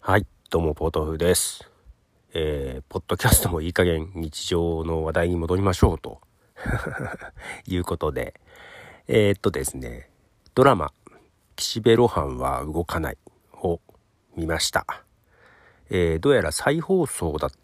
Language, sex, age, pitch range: Japanese, male, 40-59, 80-130 Hz